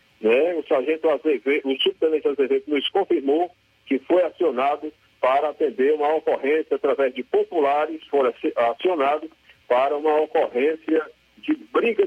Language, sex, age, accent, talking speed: Portuguese, male, 50-69, Brazilian, 120 wpm